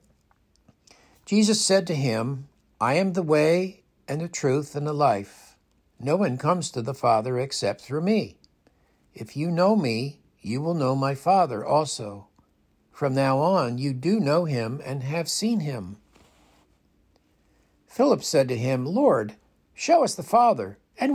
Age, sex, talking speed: 60-79, male, 155 wpm